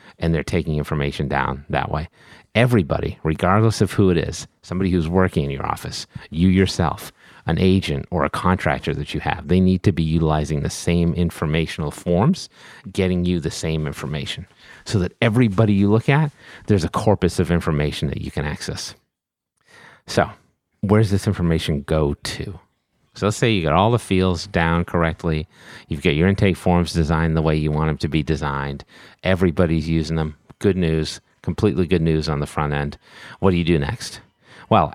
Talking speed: 185 wpm